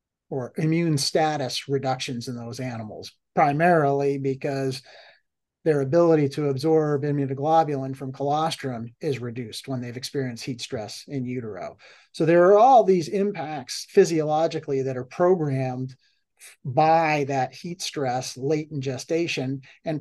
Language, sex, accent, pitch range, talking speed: English, male, American, 135-160 Hz, 130 wpm